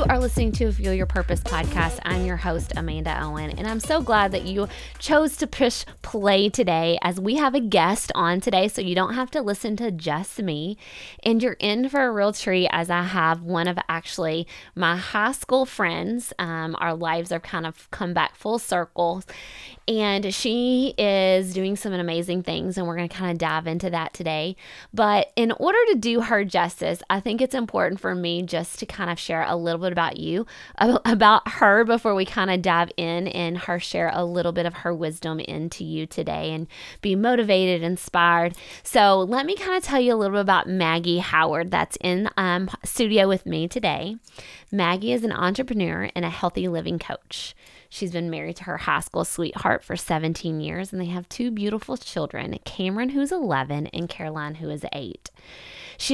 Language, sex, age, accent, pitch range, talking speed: English, female, 20-39, American, 170-220 Hz, 200 wpm